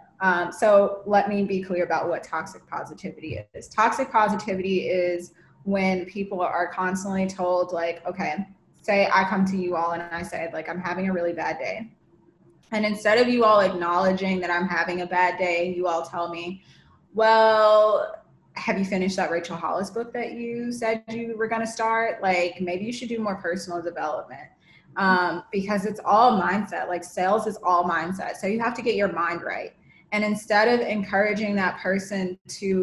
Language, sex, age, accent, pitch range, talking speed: English, female, 20-39, American, 175-210 Hz, 185 wpm